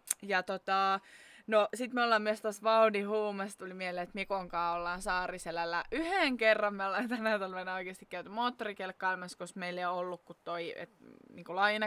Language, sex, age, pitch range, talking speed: Finnish, female, 20-39, 180-220 Hz, 165 wpm